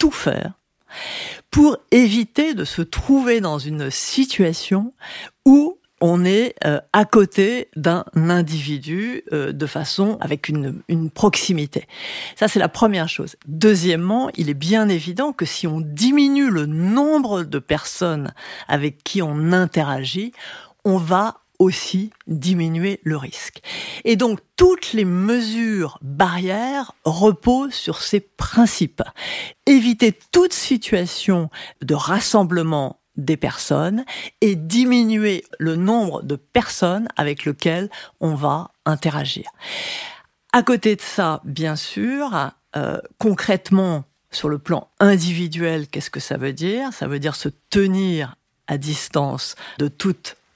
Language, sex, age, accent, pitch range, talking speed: French, female, 50-69, French, 155-225 Hz, 125 wpm